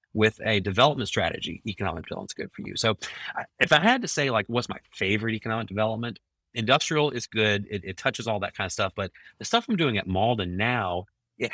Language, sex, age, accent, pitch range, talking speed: English, male, 30-49, American, 95-120 Hz, 215 wpm